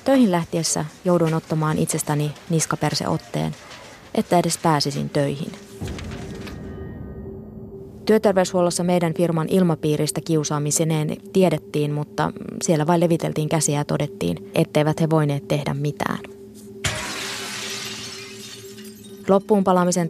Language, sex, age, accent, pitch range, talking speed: Finnish, female, 20-39, native, 160-200 Hz, 90 wpm